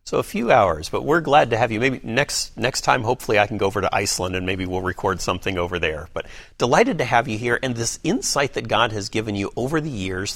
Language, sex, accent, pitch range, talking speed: English, male, American, 100-125 Hz, 260 wpm